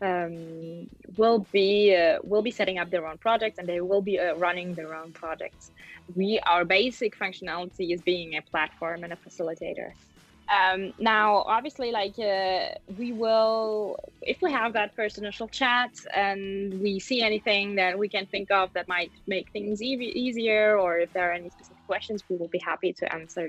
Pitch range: 180-215 Hz